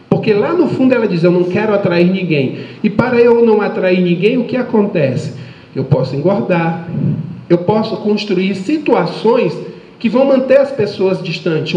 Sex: male